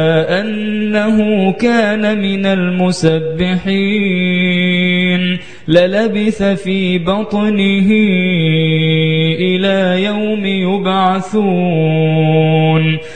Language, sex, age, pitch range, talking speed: Arabic, male, 20-39, 160-195 Hz, 45 wpm